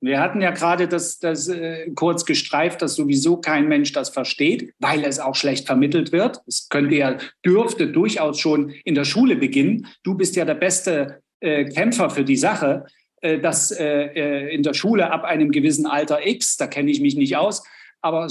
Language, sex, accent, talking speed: German, male, German, 195 wpm